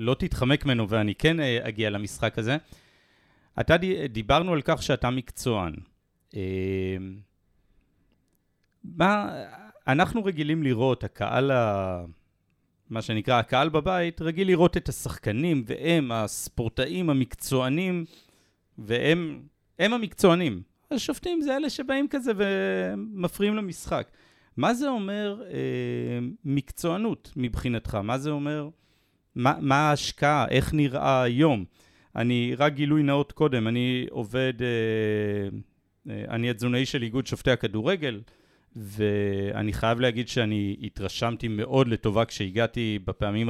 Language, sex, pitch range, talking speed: Hebrew, male, 105-155 Hz, 110 wpm